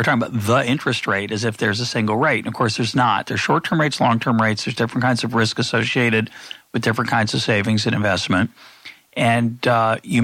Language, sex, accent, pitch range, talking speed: English, male, American, 105-125 Hz, 225 wpm